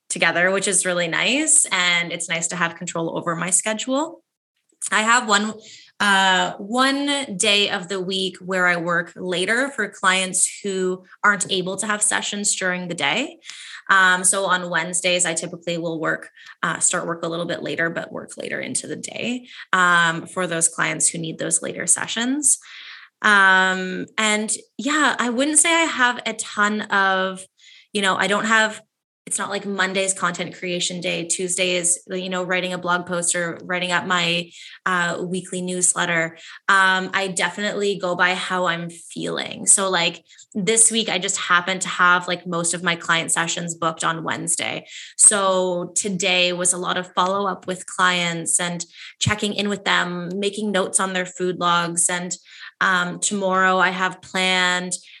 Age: 20-39